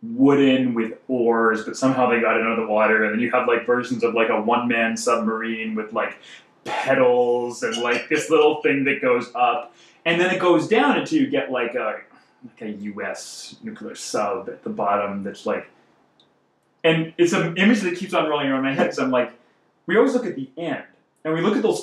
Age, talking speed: 20-39, 215 wpm